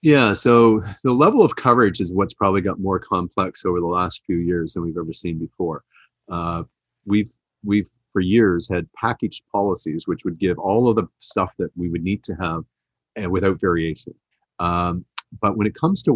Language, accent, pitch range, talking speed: English, American, 90-115 Hz, 195 wpm